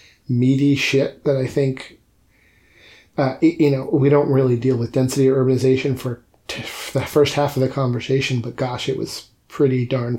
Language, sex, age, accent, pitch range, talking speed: English, male, 40-59, American, 130-145 Hz, 185 wpm